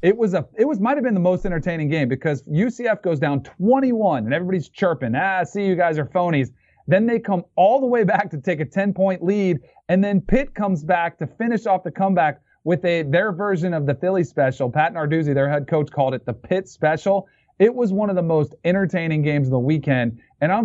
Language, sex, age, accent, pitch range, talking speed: English, male, 40-59, American, 130-180 Hz, 235 wpm